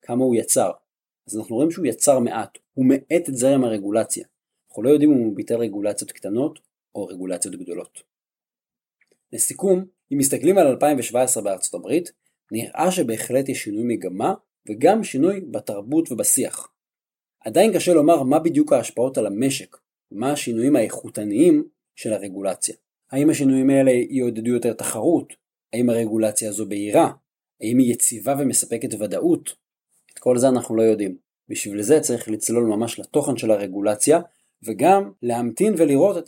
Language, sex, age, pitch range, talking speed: Hebrew, male, 30-49, 110-160 Hz, 140 wpm